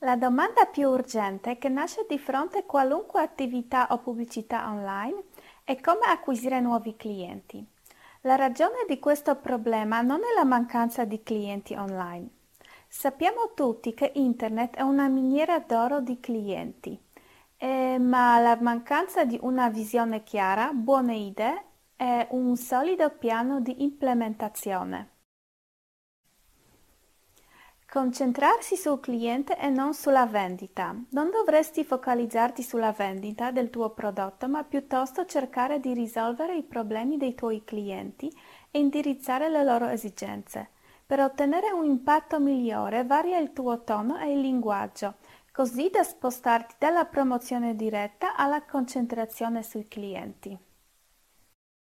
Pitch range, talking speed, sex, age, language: 230-285 Hz, 125 wpm, female, 30-49, Italian